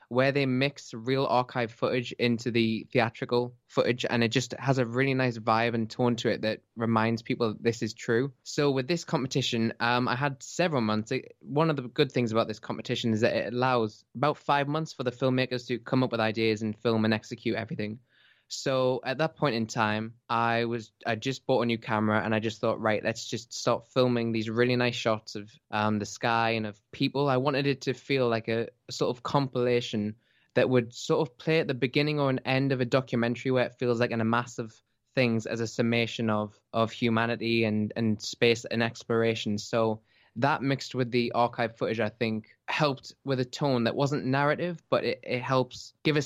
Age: 10-29